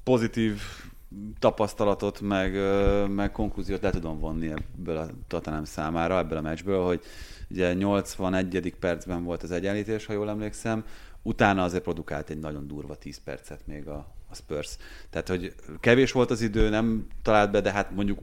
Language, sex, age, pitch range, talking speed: Hungarian, male, 30-49, 85-100 Hz, 160 wpm